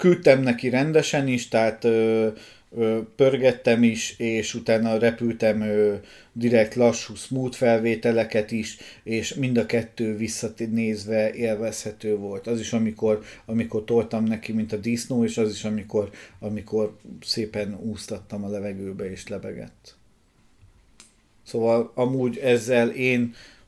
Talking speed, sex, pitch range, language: 115 wpm, male, 110-120 Hz, Hungarian